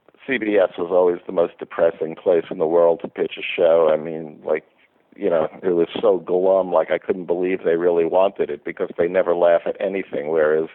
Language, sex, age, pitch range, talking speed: English, male, 50-69, 105-140 Hz, 210 wpm